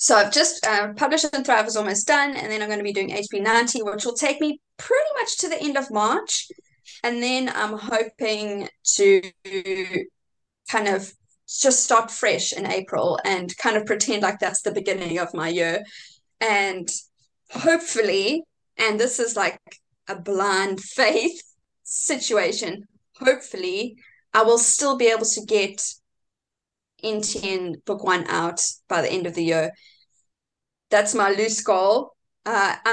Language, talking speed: English, 155 wpm